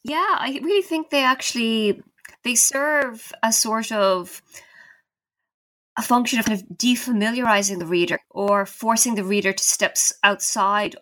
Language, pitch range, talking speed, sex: English, 185-235 Hz, 135 wpm, female